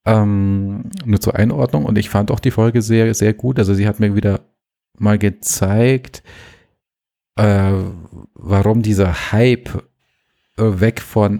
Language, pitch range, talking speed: German, 95-110 Hz, 135 wpm